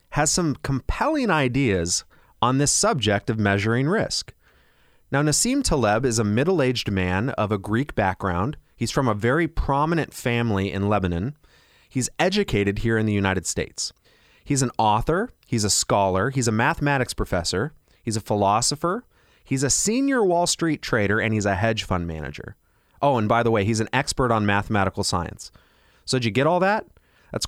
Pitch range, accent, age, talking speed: 100-145 Hz, American, 30-49, 170 wpm